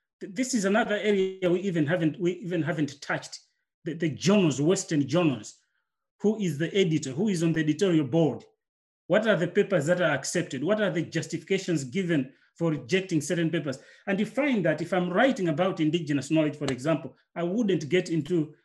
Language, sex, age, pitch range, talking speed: English, male, 30-49, 160-200 Hz, 185 wpm